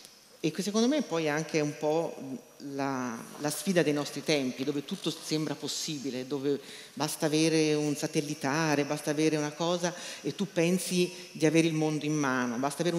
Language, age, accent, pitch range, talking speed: Italian, 40-59, native, 145-180 Hz, 180 wpm